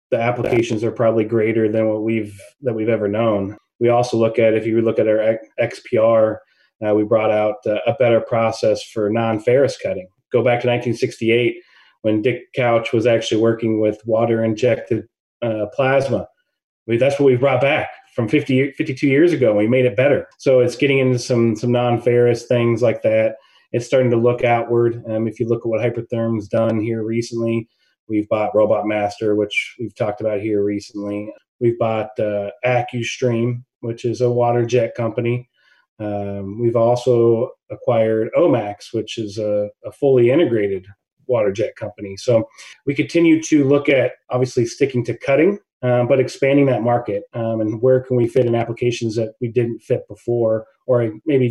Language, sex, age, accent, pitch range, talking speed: English, male, 30-49, American, 110-125 Hz, 175 wpm